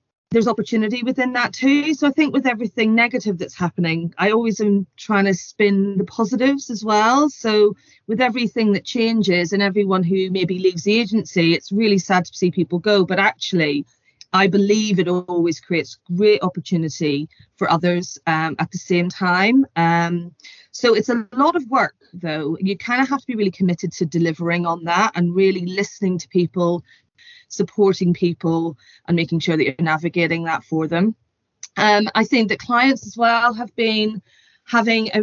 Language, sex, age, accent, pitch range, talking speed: English, female, 30-49, British, 175-220 Hz, 180 wpm